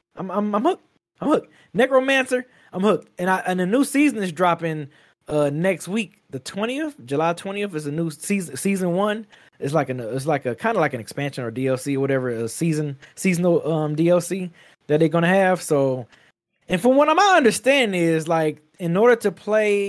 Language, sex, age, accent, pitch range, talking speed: English, male, 20-39, American, 160-230 Hz, 200 wpm